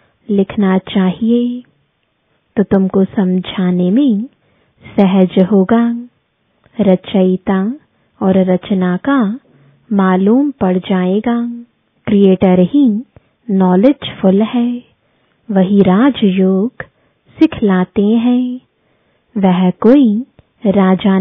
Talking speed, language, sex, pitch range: 75 wpm, English, female, 190-240 Hz